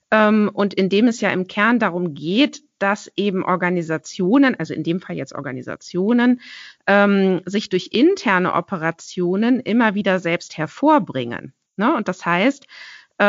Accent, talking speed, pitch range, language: German, 130 wpm, 175-230 Hz, German